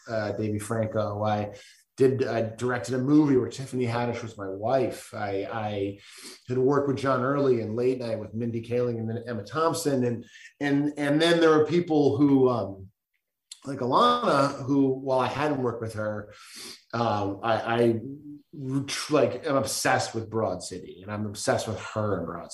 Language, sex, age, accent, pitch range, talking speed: English, male, 30-49, American, 115-150 Hz, 175 wpm